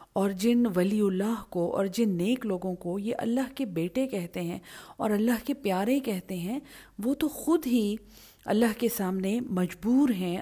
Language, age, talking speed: English, 40-59, 180 wpm